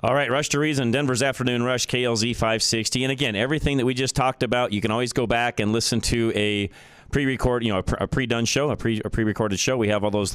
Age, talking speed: 40-59, 240 wpm